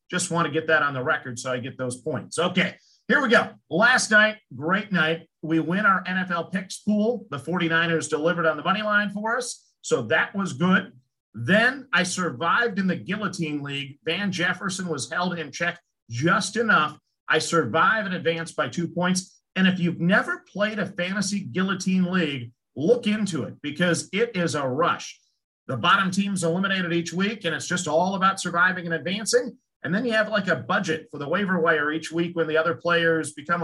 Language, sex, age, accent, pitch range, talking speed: English, male, 50-69, American, 160-195 Hz, 200 wpm